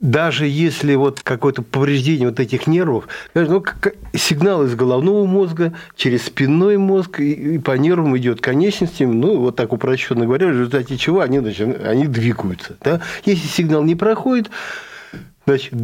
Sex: male